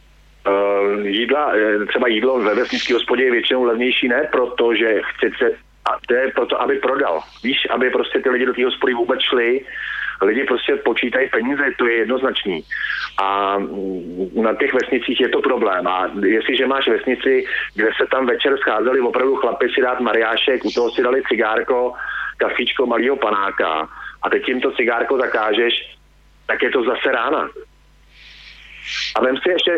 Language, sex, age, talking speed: Slovak, male, 40-59, 160 wpm